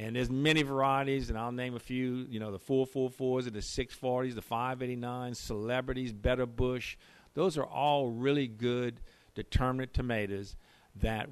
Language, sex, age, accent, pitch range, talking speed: English, male, 50-69, American, 95-120 Hz, 175 wpm